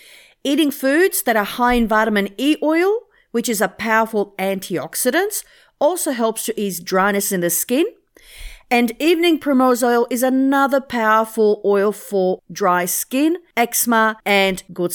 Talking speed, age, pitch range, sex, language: 145 wpm, 50-69, 195-275 Hz, female, English